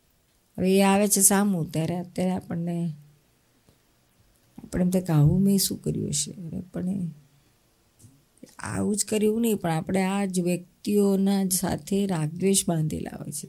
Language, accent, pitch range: Gujarati, native, 155-195 Hz